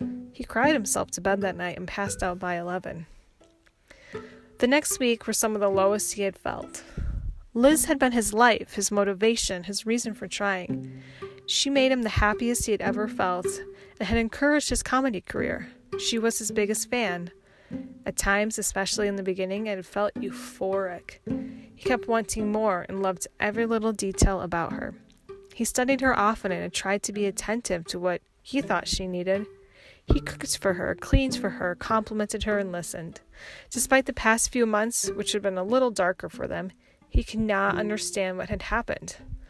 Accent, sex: American, female